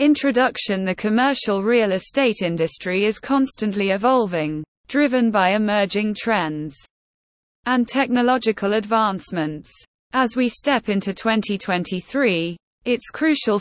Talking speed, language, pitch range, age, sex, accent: 100 wpm, English, 185-250 Hz, 20-39, female, British